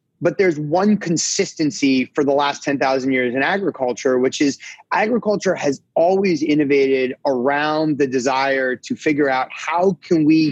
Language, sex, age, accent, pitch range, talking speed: English, male, 30-49, American, 135-165 Hz, 150 wpm